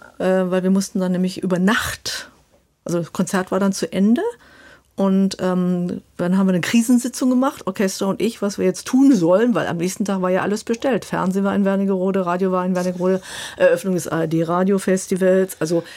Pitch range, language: 175-205 Hz, German